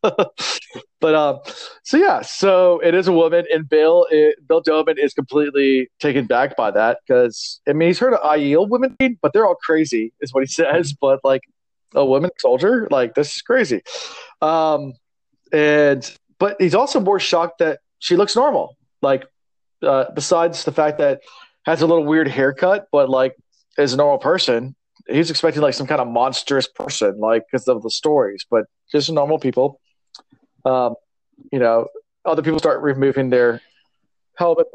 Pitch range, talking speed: 135-180 Hz, 170 wpm